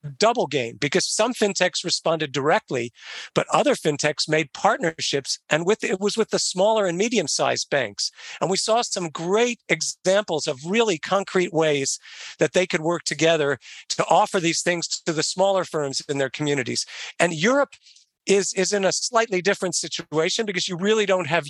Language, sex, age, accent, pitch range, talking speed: English, male, 50-69, American, 150-195 Hz, 175 wpm